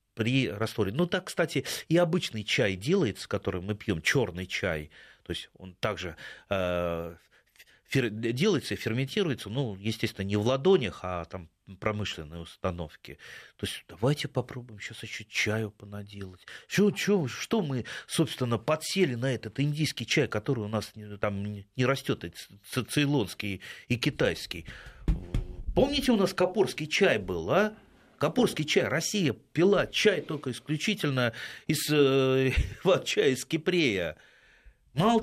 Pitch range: 110-170 Hz